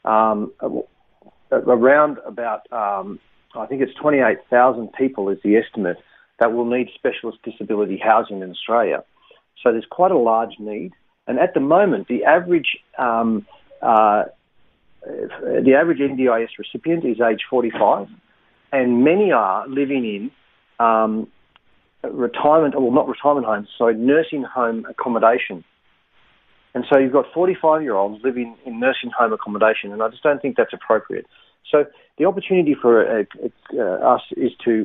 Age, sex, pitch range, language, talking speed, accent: 40-59, male, 110-150 Hz, English, 140 wpm, Australian